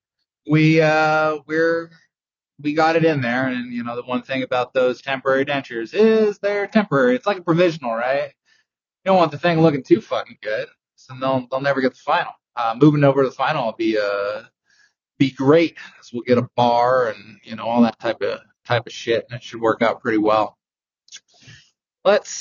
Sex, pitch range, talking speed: male, 125-165 Hz, 205 wpm